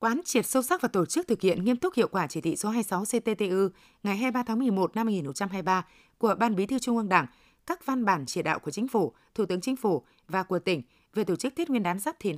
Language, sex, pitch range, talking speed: Vietnamese, female, 180-240 Hz, 260 wpm